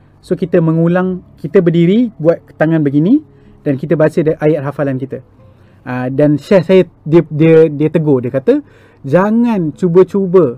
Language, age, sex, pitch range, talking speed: Malay, 30-49, male, 140-175 Hz, 140 wpm